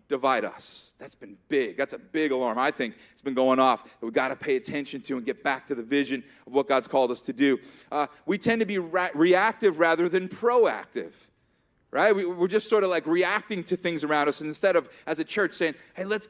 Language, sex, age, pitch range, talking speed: English, male, 30-49, 160-210 Hz, 230 wpm